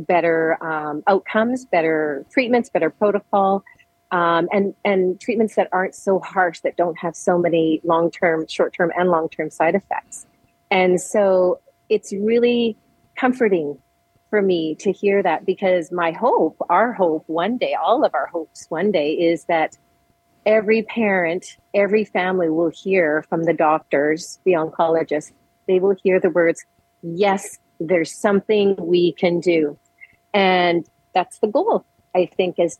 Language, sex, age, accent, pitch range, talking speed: English, female, 40-59, American, 170-200 Hz, 145 wpm